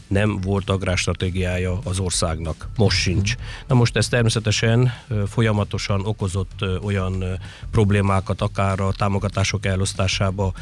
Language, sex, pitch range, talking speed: Hungarian, male, 95-105 Hz, 105 wpm